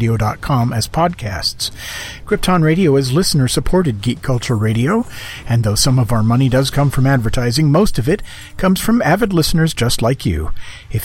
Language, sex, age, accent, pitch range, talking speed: English, male, 40-59, American, 115-155 Hz, 165 wpm